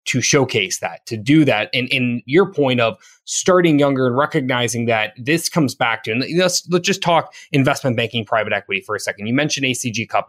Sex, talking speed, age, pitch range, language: male, 210 wpm, 20-39, 110-145 Hz, English